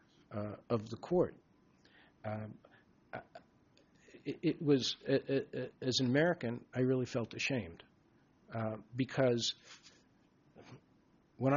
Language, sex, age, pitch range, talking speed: English, male, 50-69, 115-145 Hz, 95 wpm